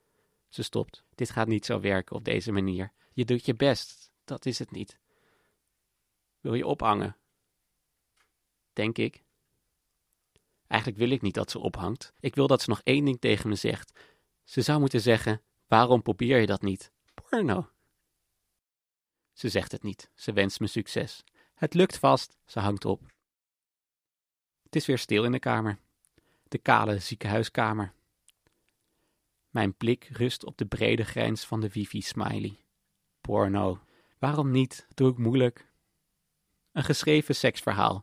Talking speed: 150 wpm